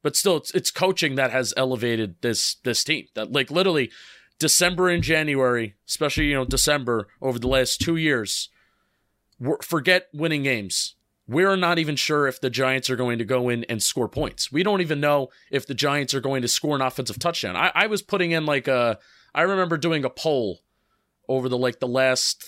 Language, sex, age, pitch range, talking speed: English, male, 30-49, 125-165 Hz, 200 wpm